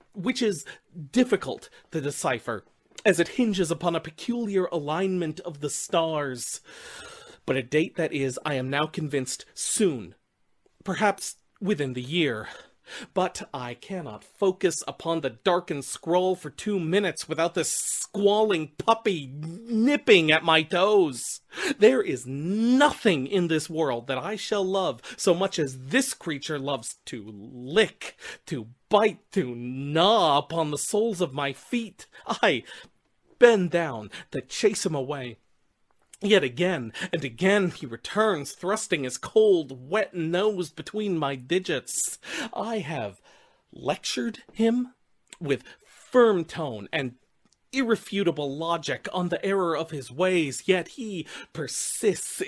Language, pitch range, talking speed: English, 145-205 Hz, 135 wpm